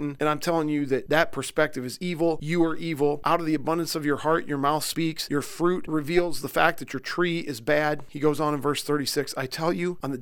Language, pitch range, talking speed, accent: English, 135-160 Hz, 255 wpm, American